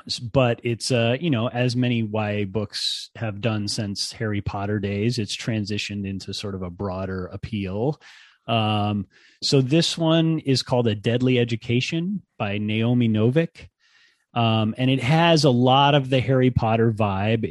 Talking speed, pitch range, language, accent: 160 wpm, 105-125 Hz, English, American